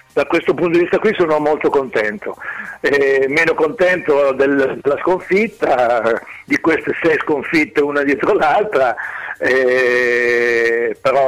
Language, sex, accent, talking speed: Italian, male, native, 130 wpm